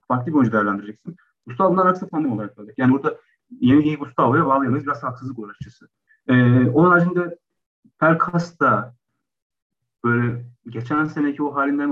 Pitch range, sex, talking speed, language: 115-145 Hz, male, 140 wpm, Turkish